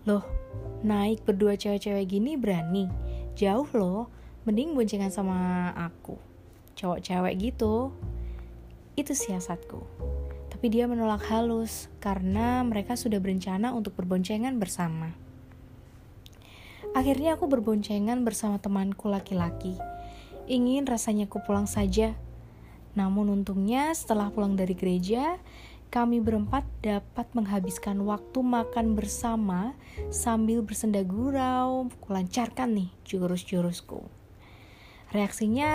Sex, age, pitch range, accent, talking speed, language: female, 20-39, 175-235 Hz, native, 95 wpm, Indonesian